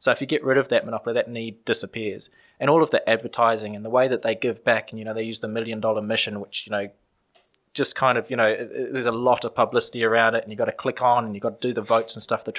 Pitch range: 105-125 Hz